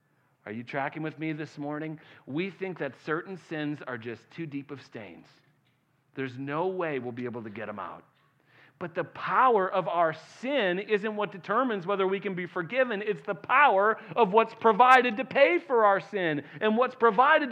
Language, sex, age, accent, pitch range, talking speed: English, male, 40-59, American, 150-235 Hz, 190 wpm